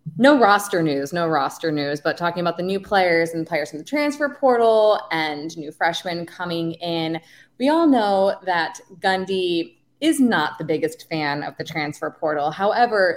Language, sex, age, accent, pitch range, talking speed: English, female, 20-39, American, 165-215 Hz, 175 wpm